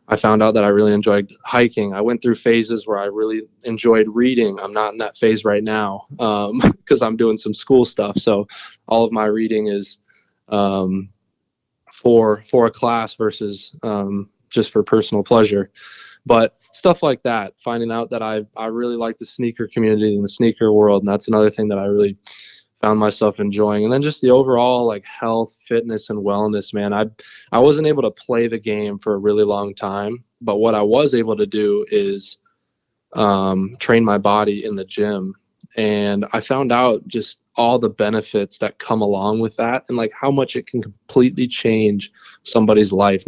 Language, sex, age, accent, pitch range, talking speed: English, male, 20-39, American, 105-115 Hz, 190 wpm